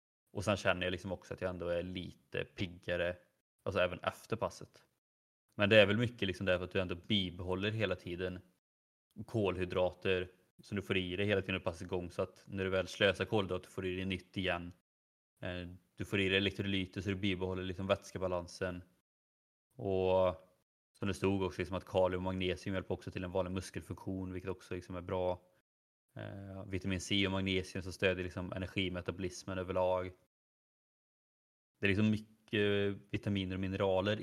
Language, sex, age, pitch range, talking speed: Swedish, male, 20-39, 90-100 Hz, 175 wpm